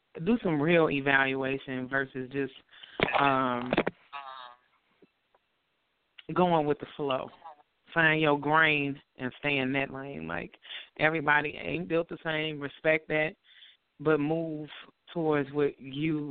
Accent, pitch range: American, 135-160 Hz